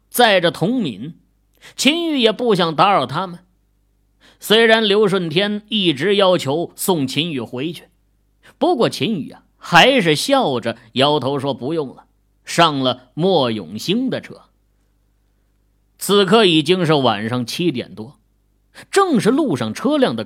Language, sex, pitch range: Chinese, male, 120-190 Hz